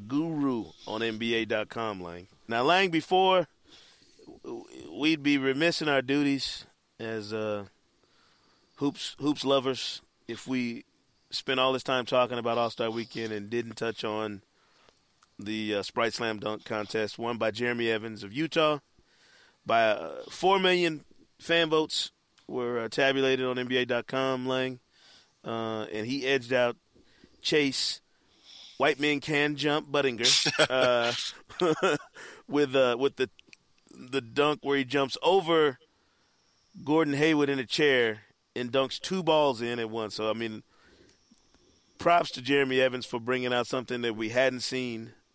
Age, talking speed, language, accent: 30-49, 145 wpm, English, American